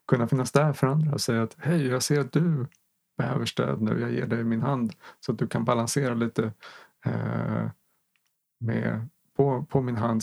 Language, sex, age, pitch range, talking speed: Swedish, male, 30-49, 110-140 Hz, 195 wpm